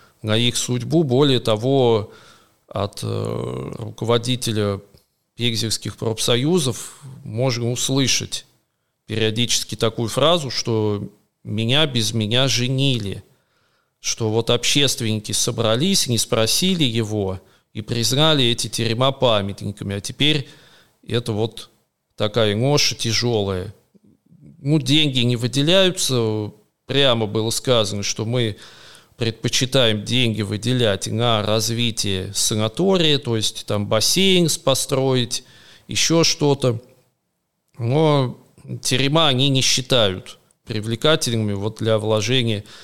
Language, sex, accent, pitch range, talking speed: Russian, male, native, 110-130 Hz, 100 wpm